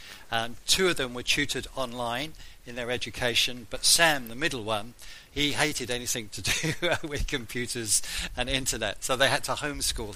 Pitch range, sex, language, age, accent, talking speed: 115-135 Hz, male, English, 50-69, British, 170 wpm